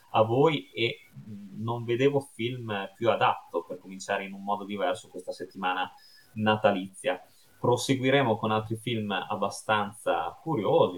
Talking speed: 125 wpm